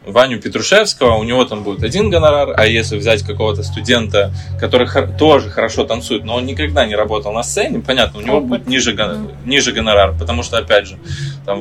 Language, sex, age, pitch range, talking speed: Russian, male, 20-39, 110-135 Hz, 190 wpm